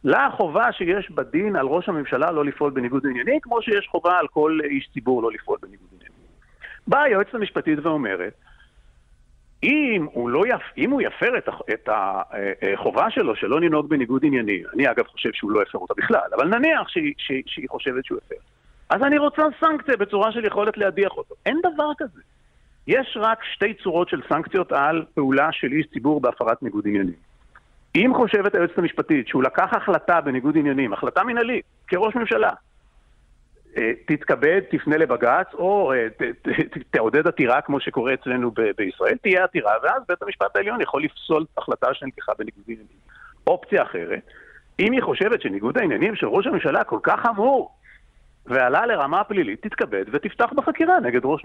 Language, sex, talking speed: Hebrew, male, 165 wpm